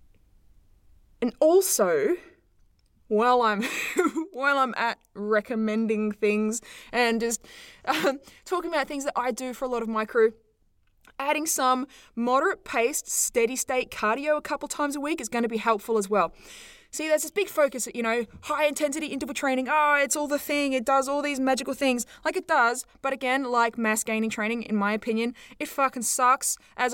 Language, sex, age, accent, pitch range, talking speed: English, female, 20-39, Australian, 220-280 Hz, 180 wpm